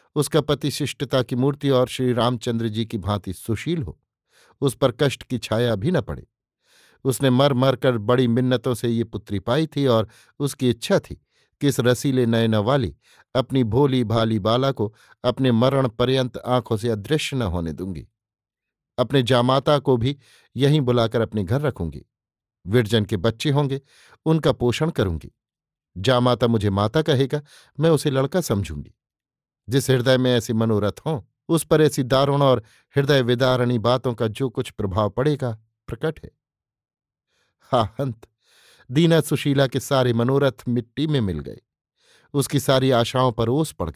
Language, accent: Hindi, native